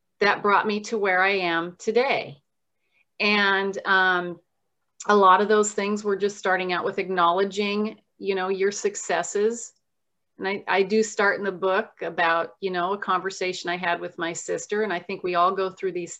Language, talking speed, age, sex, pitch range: English, 190 wpm, 40-59, female, 180-220 Hz